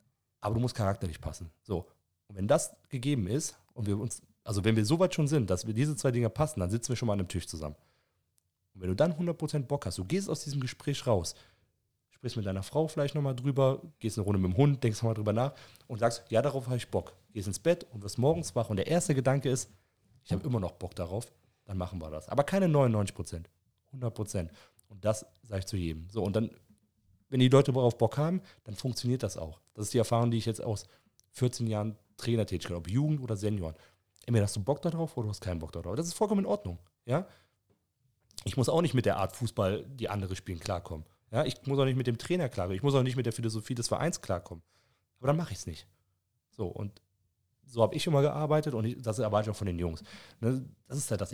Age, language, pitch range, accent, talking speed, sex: 30-49, German, 95-130 Hz, German, 245 wpm, male